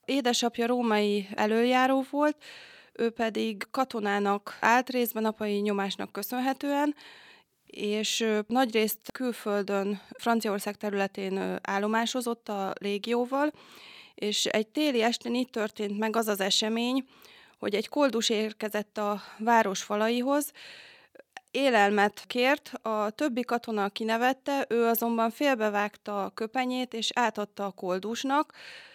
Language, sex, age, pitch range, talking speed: Hungarian, female, 20-39, 210-255 Hz, 110 wpm